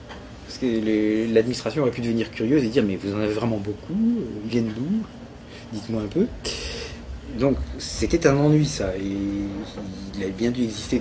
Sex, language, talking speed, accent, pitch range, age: male, French, 170 wpm, French, 110-145 Hz, 30-49